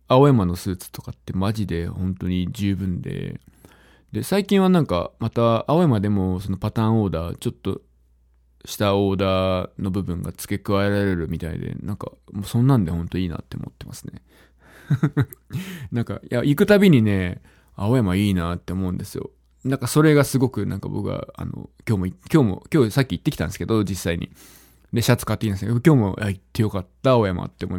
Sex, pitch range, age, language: male, 85-120 Hz, 20-39, Japanese